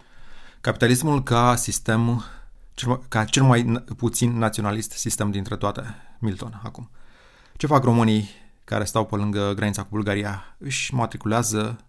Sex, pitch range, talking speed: male, 100-115 Hz, 125 wpm